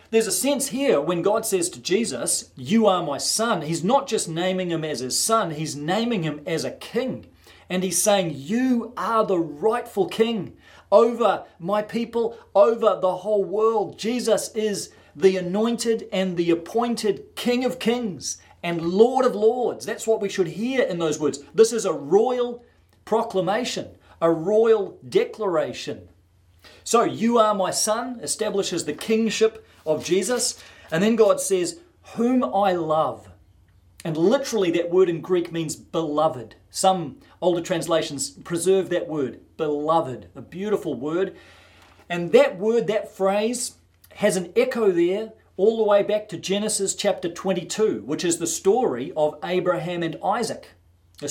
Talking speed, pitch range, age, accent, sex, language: 155 wpm, 160-220 Hz, 40-59, Australian, male, English